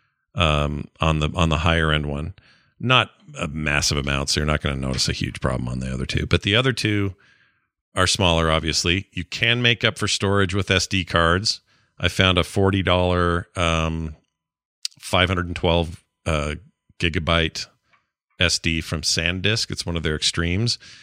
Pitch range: 85-110 Hz